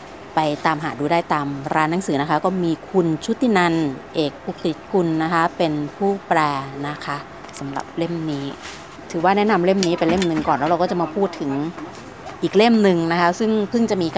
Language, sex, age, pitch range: Thai, female, 30-49, 155-180 Hz